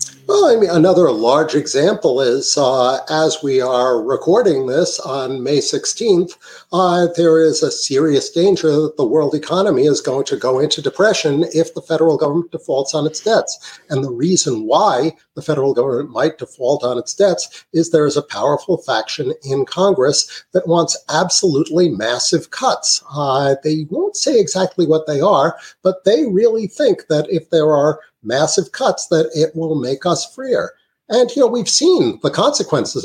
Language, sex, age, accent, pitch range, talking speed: English, male, 50-69, American, 150-225 Hz, 175 wpm